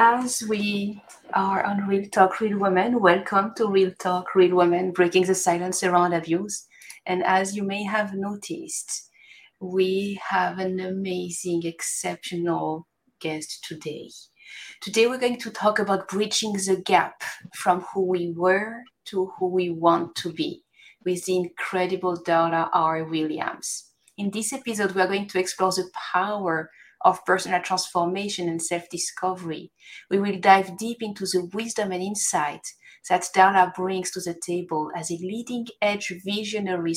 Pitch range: 175-205 Hz